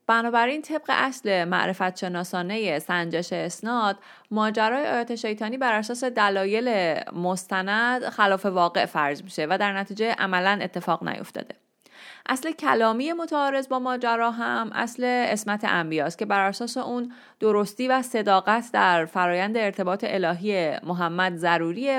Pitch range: 180-230 Hz